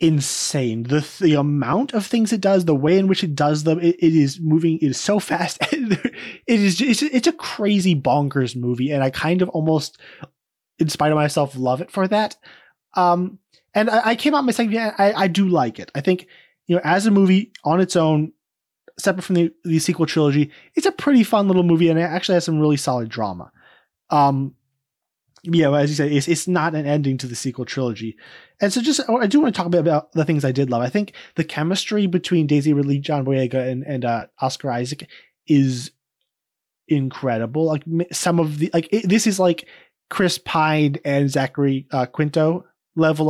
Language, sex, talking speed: English, male, 210 wpm